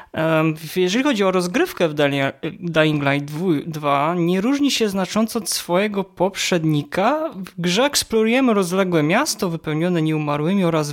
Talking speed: 125 wpm